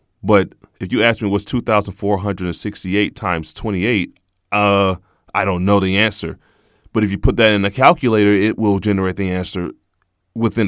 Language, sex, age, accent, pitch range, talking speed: English, male, 20-39, American, 90-105 Hz, 165 wpm